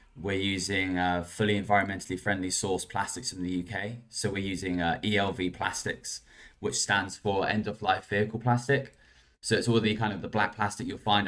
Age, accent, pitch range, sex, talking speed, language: 10-29, British, 95-110 Hz, male, 185 wpm, English